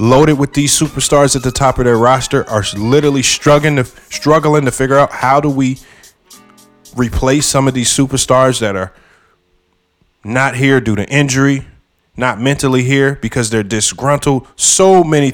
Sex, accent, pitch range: male, American, 105-135 Hz